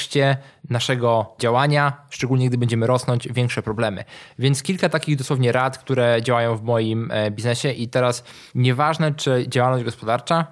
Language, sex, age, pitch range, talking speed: Polish, male, 20-39, 115-145 Hz, 135 wpm